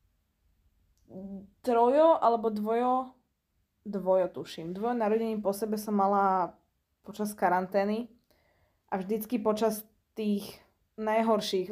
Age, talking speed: 20-39, 90 wpm